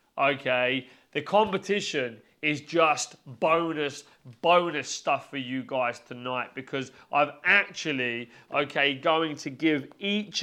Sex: male